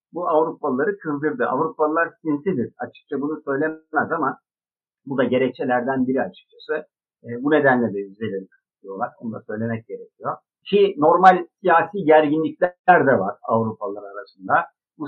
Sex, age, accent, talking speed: male, 60-79, native, 125 wpm